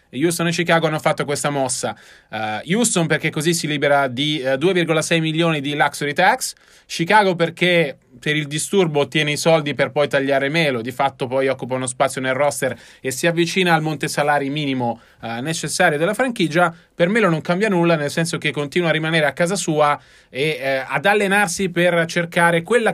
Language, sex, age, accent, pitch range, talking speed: Italian, male, 30-49, native, 140-180 Hz, 180 wpm